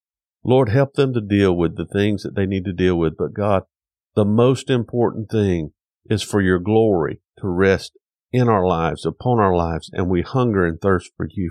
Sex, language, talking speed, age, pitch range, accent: male, English, 205 wpm, 50-69, 90-125 Hz, American